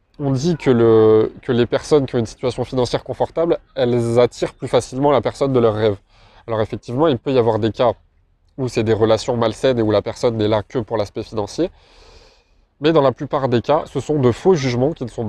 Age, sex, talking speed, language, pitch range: 20-39, male, 230 wpm, French, 110-135 Hz